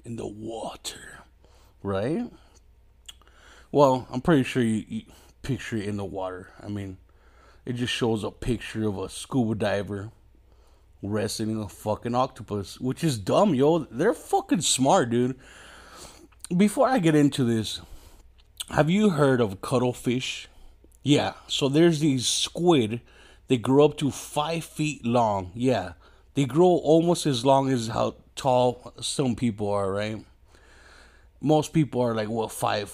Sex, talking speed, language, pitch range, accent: male, 145 wpm, English, 105-140 Hz, American